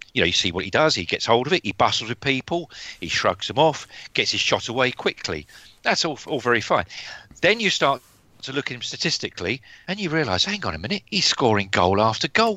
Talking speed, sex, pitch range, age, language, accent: 240 wpm, male, 120-175 Hz, 40-59, English, British